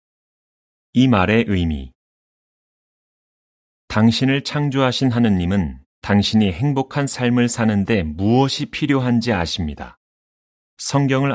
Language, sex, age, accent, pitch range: Korean, male, 30-49, native, 85-120 Hz